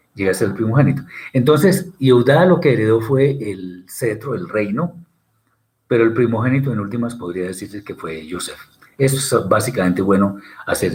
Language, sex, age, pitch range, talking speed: Spanish, male, 50-69, 95-140 Hz, 165 wpm